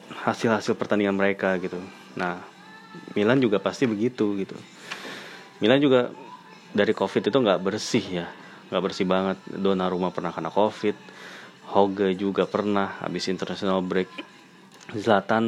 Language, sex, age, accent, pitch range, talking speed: Indonesian, male, 20-39, native, 95-105 Hz, 130 wpm